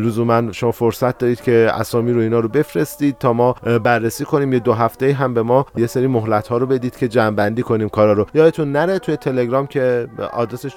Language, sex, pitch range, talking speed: Persian, male, 120-150 Hz, 205 wpm